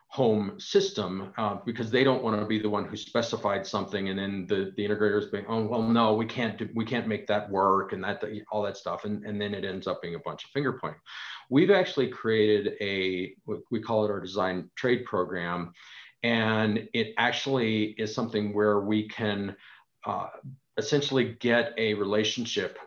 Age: 40-59